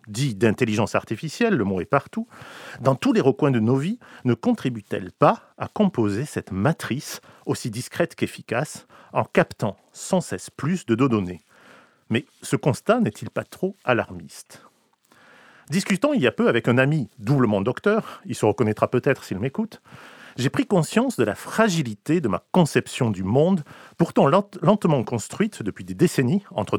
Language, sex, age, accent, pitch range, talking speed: French, male, 40-59, French, 115-180 Hz, 160 wpm